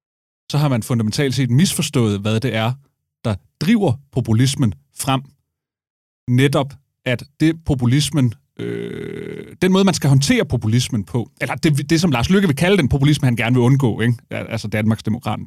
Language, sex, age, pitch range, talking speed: Danish, male, 30-49, 110-140 Hz, 165 wpm